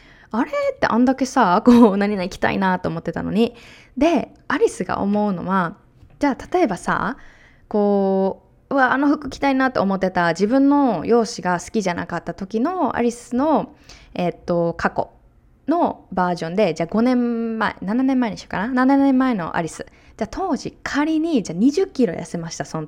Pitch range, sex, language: 165-240 Hz, female, Japanese